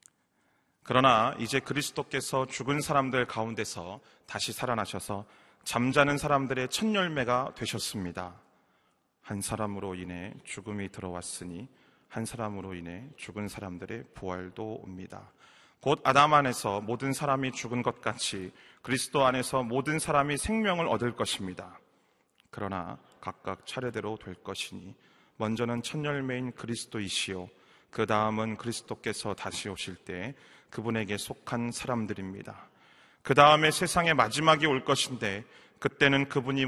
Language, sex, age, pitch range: Korean, male, 30-49, 105-135 Hz